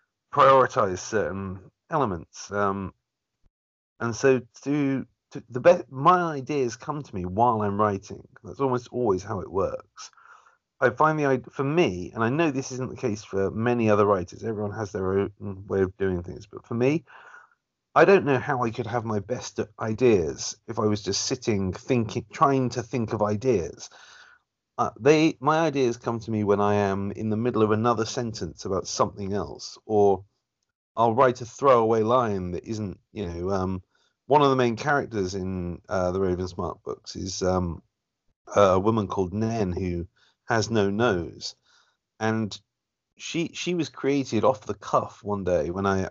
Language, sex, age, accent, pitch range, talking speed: English, male, 40-59, British, 100-125 Hz, 175 wpm